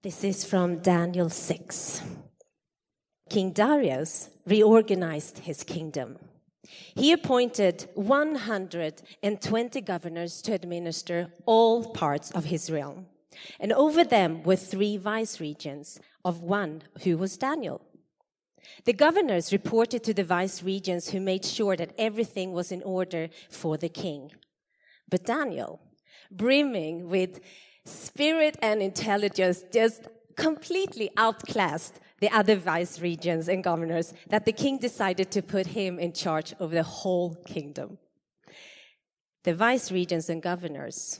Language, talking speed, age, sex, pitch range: English, 125 wpm, 30-49, female, 170-210 Hz